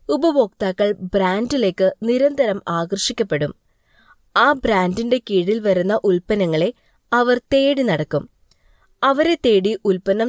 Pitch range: 185-260 Hz